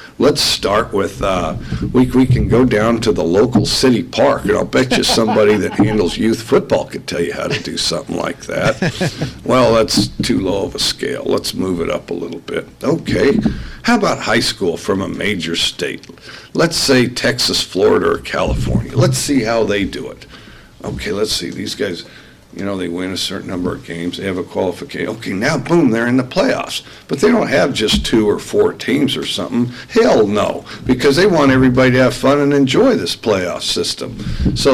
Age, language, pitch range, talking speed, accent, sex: 60-79, English, 110-130 Hz, 205 wpm, American, male